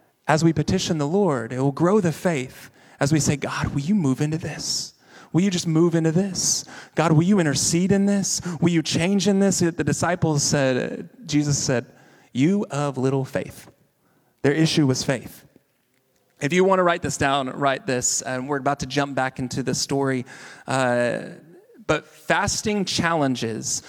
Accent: American